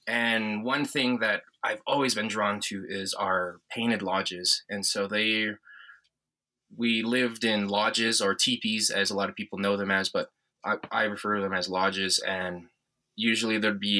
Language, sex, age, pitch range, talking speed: English, male, 20-39, 95-110 Hz, 180 wpm